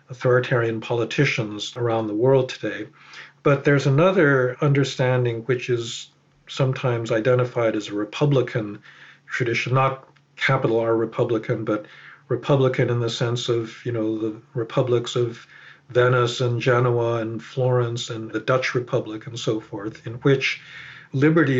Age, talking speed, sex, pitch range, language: 50-69, 135 wpm, male, 115-130 Hz, English